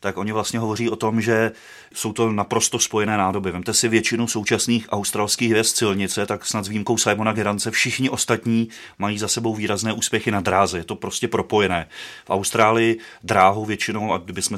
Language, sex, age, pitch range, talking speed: Czech, male, 30-49, 100-115 Hz, 180 wpm